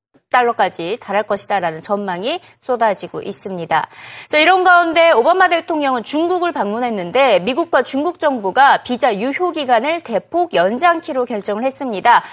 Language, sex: Korean, female